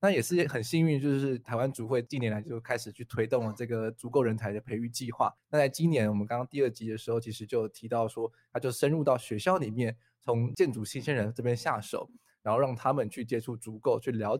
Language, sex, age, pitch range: Chinese, male, 20-39, 110-140 Hz